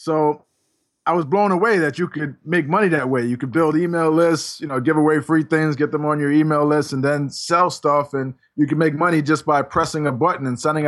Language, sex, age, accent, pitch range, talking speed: English, male, 20-39, American, 140-165 Hz, 250 wpm